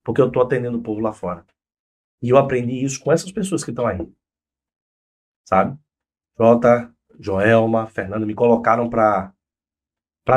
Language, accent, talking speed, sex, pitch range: Portuguese, Brazilian, 150 wpm, male, 95-145 Hz